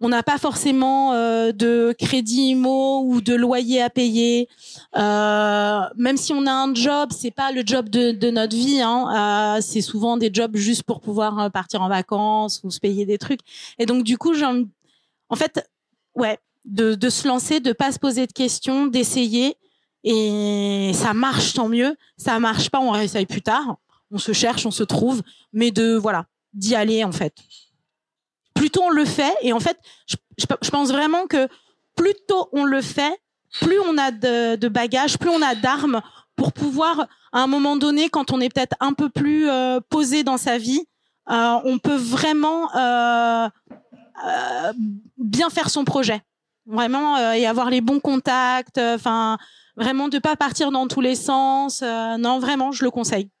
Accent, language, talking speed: French, French, 190 wpm